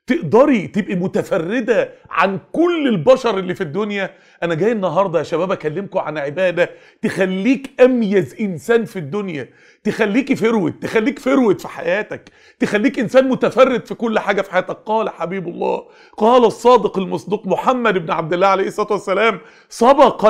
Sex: male